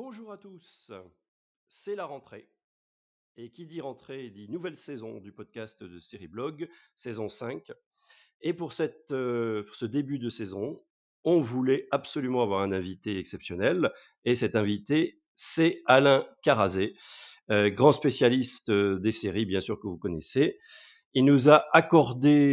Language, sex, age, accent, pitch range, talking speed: French, male, 40-59, French, 110-160 Hz, 150 wpm